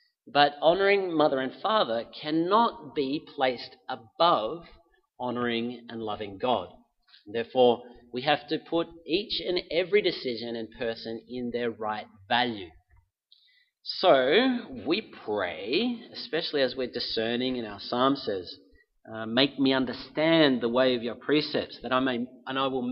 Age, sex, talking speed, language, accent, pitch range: 40-59, male, 140 wpm, English, Australian, 120-165 Hz